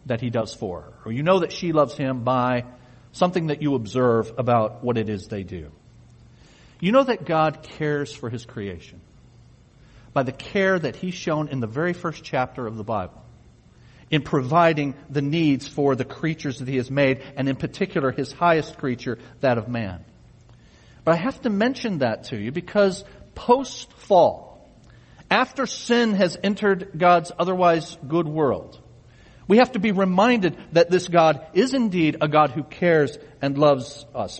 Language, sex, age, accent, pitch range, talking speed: English, male, 40-59, American, 125-175 Hz, 175 wpm